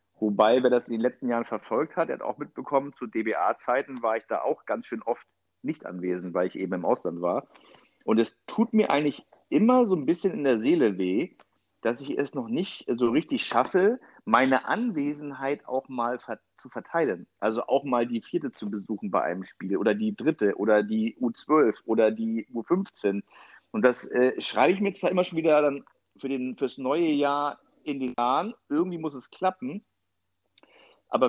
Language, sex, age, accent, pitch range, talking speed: English, male, 50-69, German, 115-145 Hz, 190 wpm